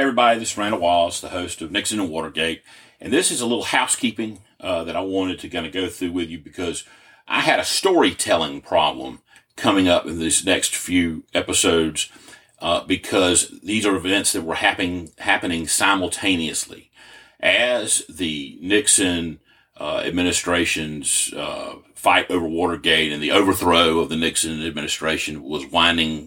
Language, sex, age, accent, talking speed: English, male, 40-59, American, 160 wpm